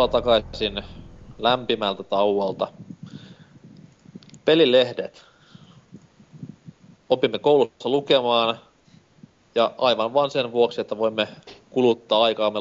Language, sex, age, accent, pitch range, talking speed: Finnish, male, 30-49, native, 100-130 Hz, 75 wpm